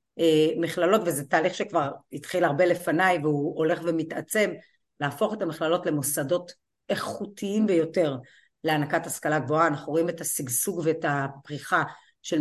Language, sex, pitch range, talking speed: Hebrew, female, 155-185 Hz, 125 wpm